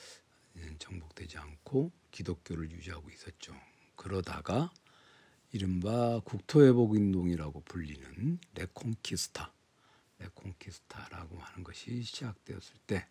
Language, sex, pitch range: Korean, male, 90-125 Hz